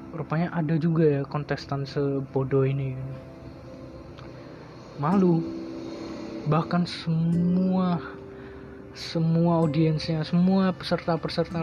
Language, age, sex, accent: Indonesian, 20-39, male, native